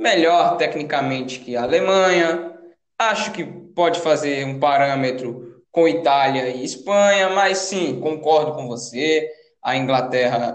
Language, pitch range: Portuguese, 125-170 Hz